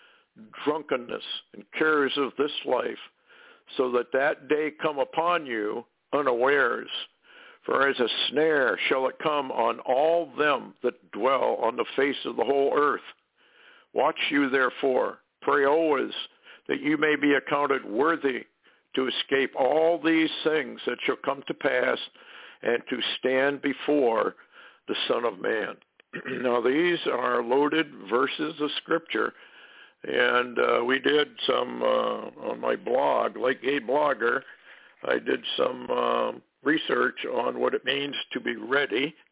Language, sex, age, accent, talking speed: English, male, 60-79, American, 140 wpm